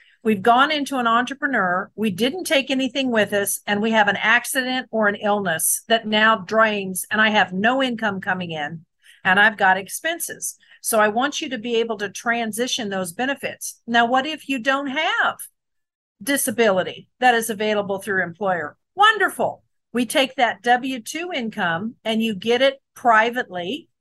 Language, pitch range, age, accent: English, 200-260 Hz, 50-69, American